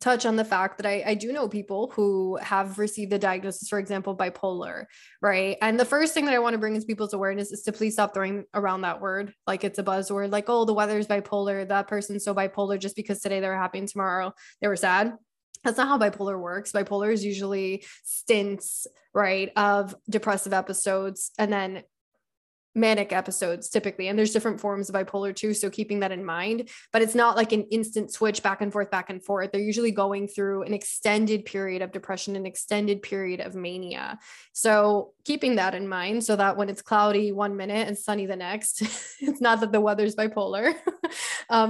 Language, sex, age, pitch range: English, female, 10-29, 195-225 Hz